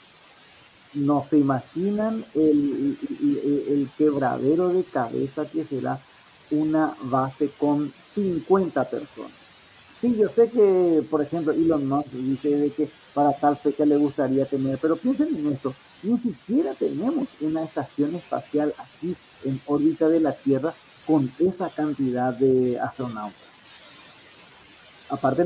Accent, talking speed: Mexican, 135 wpm